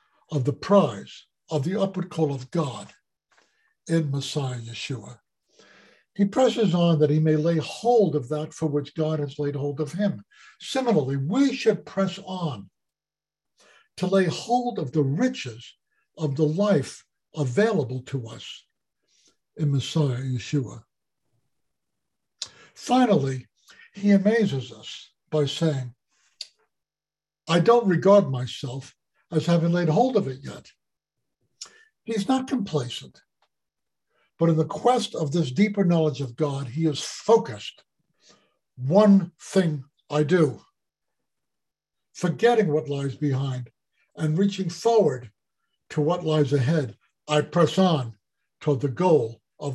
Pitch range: 140-195 Hz